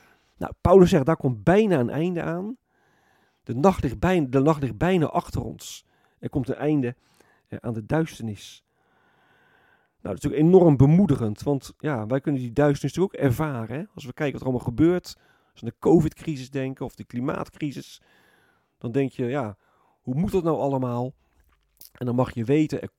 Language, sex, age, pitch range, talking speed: Dutch, male, 40-59, 115-155 Hz, 190 wpm